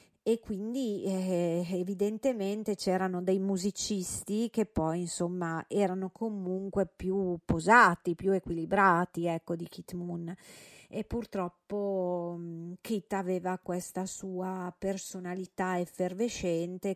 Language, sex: Italian, female